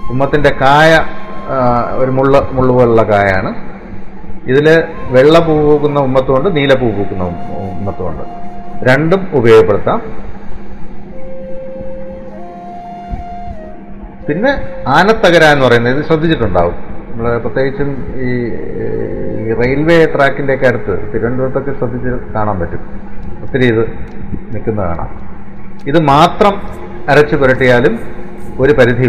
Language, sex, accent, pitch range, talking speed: Malayalam, male, native, 105-155 Hz, 90 wpm